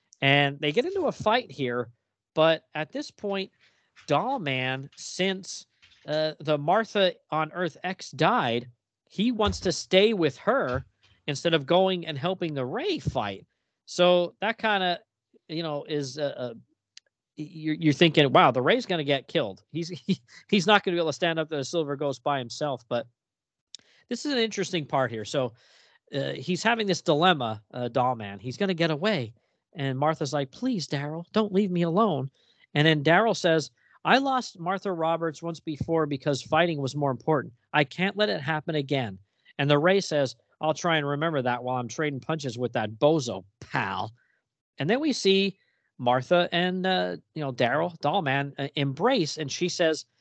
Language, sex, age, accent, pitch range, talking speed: English, male, 40-59, American, 135-180 Hz, 185 wpm